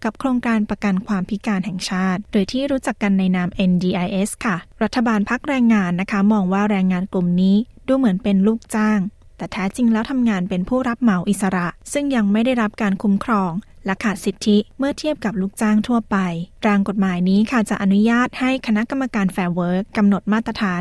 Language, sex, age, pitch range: Thai, female, 20-39, 190-225 Hz